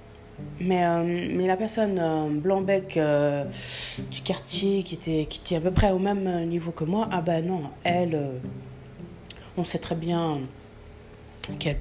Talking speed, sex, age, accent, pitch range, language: 175 wpm, female, 20-39, French, 145-185 Hz, French